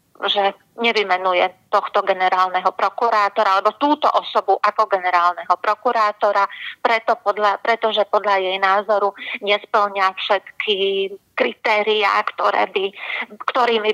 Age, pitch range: 30-49, 195-230 Hz